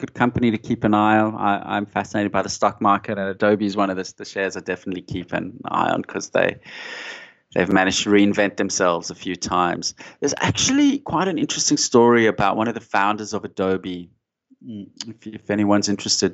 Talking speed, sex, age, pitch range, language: 205 wpm, male, 30-49, 100-125 Hz, English